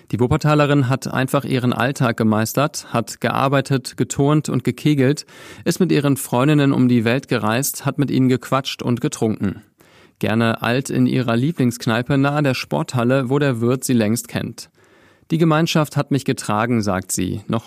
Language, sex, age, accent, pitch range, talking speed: German, male, 40-59, German, 115-140 Hz, 165 wpm